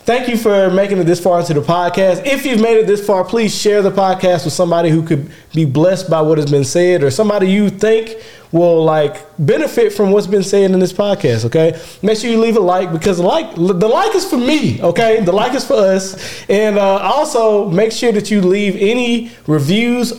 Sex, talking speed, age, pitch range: male, 220 wpm, 20-39, 160-205 Hz